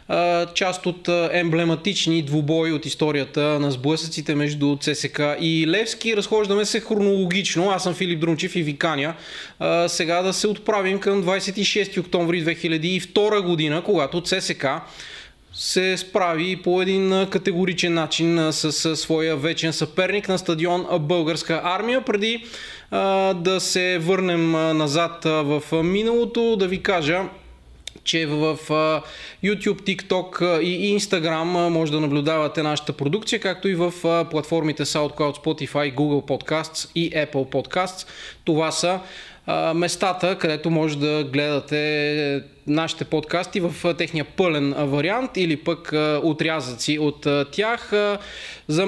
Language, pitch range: Bulgarian, 150-185 Hz